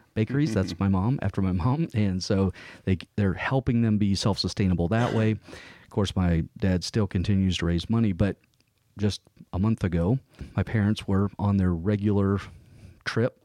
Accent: American